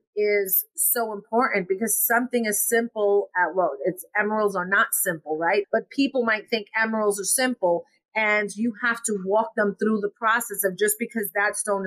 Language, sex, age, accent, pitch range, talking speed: English, female, 30-49, American, 190-230 Hz, 180 wpm